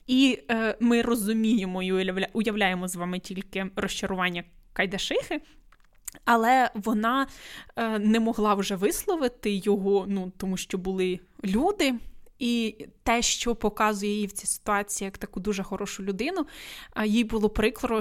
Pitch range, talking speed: 195-230 Hz, 135 wpm